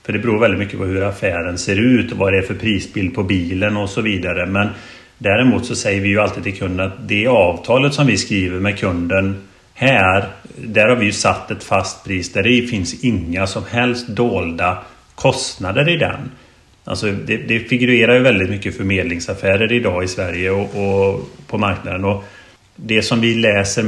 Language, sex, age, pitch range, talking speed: Swedish, male, 30-49, 95-120 Hz, 195 wpm